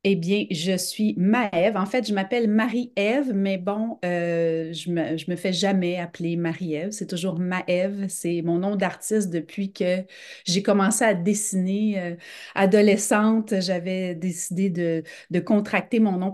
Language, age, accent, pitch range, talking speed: French, 30-49, Canadian, 175-205 Hz, 155 wpm